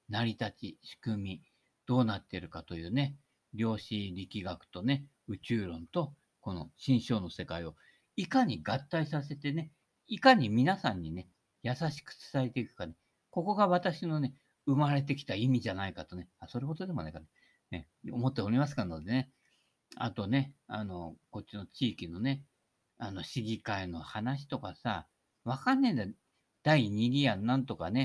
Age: 50-69